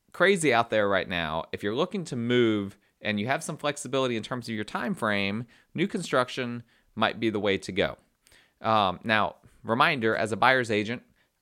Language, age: English, 30-49